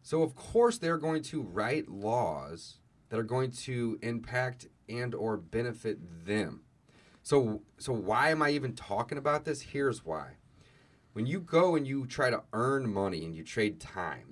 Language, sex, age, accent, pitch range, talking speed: English, male, 30-49, American, 105-140 Hz, 170 wpm